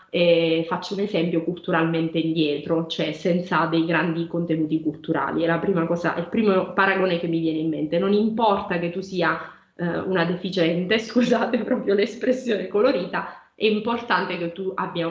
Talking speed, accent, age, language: 155 wpm, native, 20-39, Italian